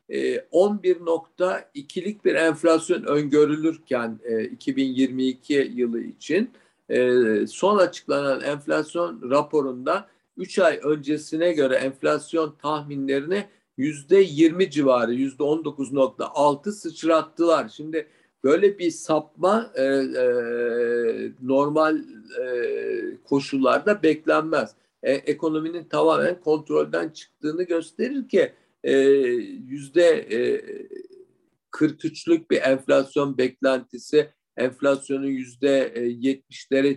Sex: male